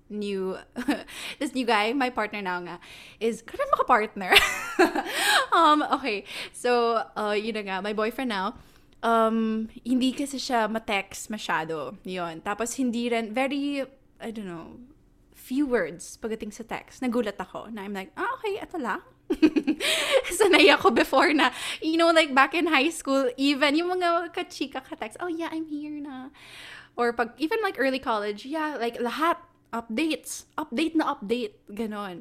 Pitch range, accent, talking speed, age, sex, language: 215-295 Hz, Filipino, 155 wpm, 20-39, female, English